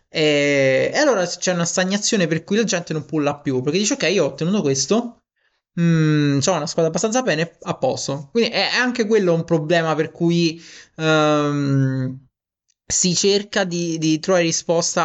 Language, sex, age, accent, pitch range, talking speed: Italian, male, 20-39, native, 145-180 Hz, 160 wpm